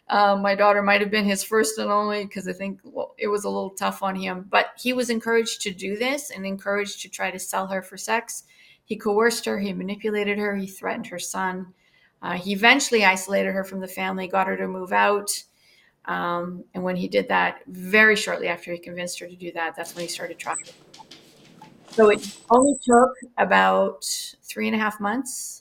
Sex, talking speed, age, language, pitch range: female, 210 wpm, 30-49, English, 185-220 Hz